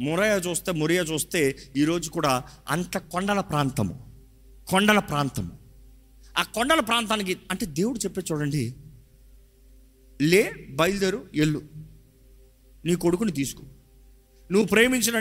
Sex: male